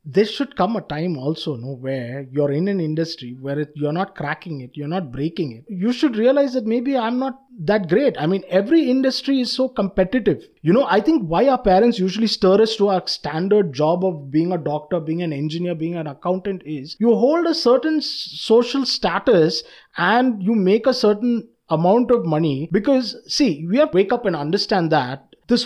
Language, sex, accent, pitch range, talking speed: English, male, Indian, 165-245 Hz, 205 wpm